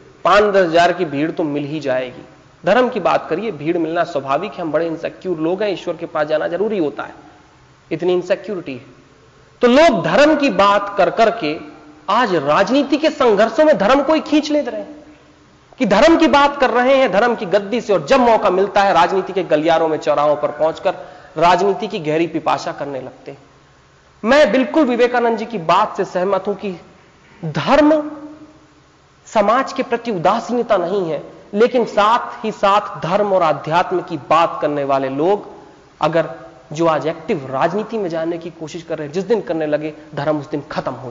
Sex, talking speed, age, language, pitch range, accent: male, 190 wpm, 40-59, Hindi, 160-235 Hz, native